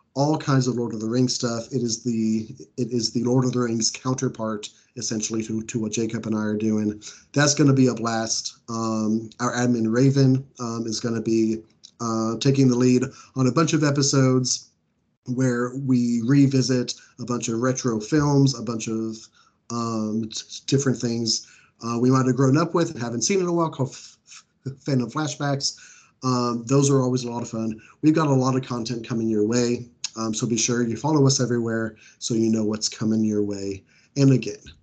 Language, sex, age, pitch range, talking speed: English, male, 30-49, 110-130 Hz, 200 wpm